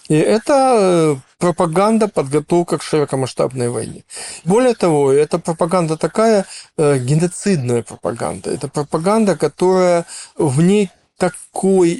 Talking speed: 100 wpm